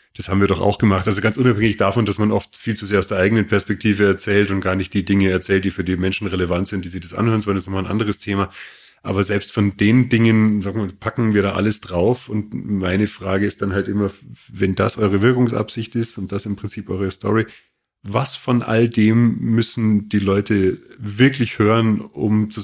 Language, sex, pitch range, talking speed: German, male, 95-110 Hz, 220 wpm